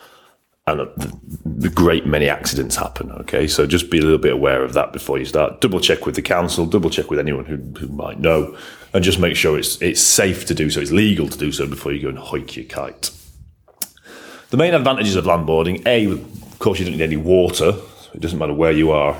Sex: male